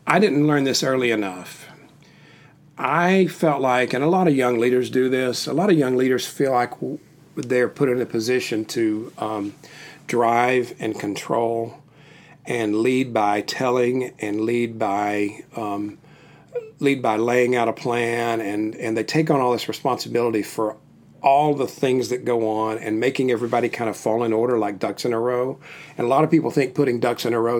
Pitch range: 110-140 Hz